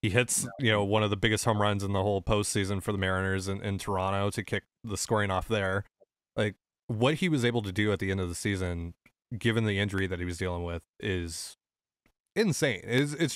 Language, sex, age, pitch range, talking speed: English, male, 30-49, 95-115 Hz, 230 wpm